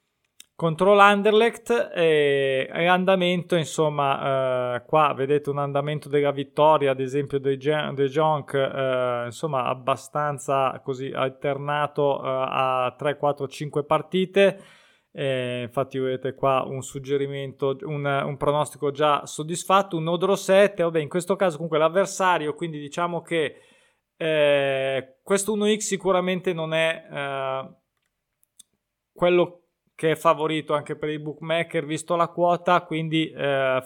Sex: male